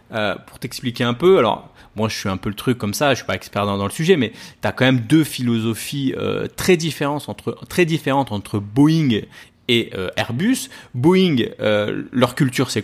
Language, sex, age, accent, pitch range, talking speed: French, male, 30-49, French, 110-155 Hz, 215 wpm